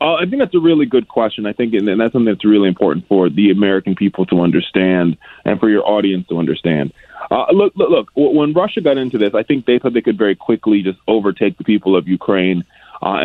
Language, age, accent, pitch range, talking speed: English, 20-39, American, 95-125 Hz, 235 wpm